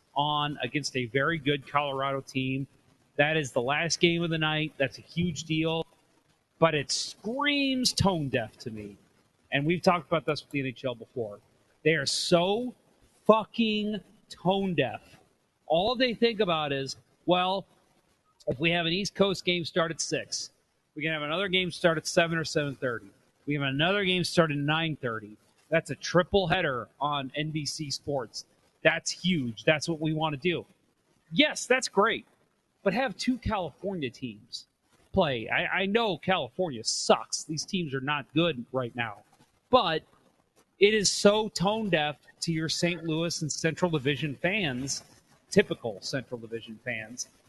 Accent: American